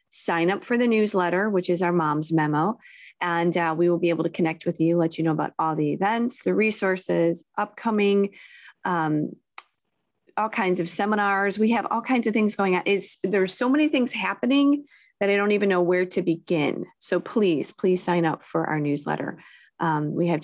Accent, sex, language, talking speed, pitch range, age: American, female, English, 195 wpm, 165-220 Hz, 30-49